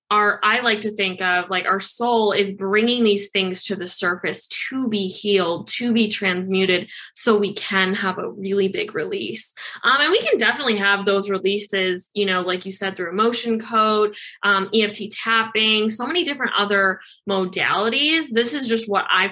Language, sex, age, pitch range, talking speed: English, female, 20-39, 190-225 Hz, 180 wpm